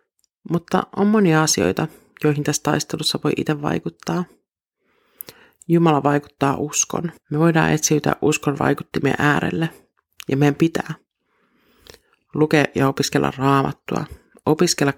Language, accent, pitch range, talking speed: Finnish, native, 145-165 Hz, 110 wpm